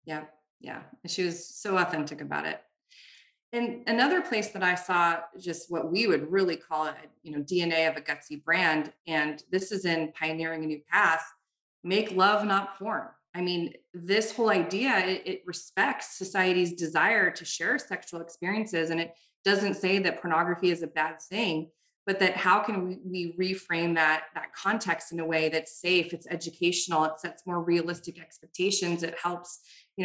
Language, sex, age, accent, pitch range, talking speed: English, female, 20-39, American, 160-190 Hz, 180 wpm